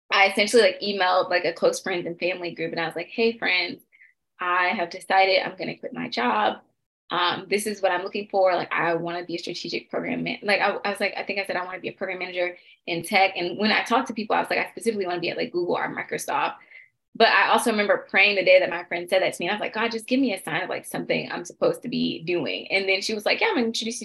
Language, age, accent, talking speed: English, 20-39, American, 295 wpm